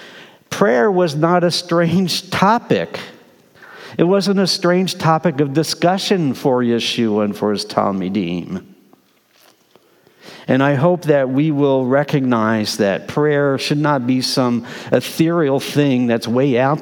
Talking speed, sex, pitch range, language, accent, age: 130 wpm, male, 115-160 Hz, English, American, 60-79